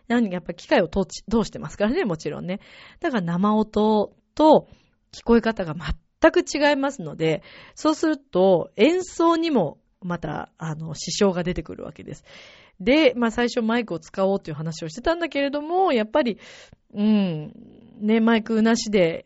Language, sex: Japanese, female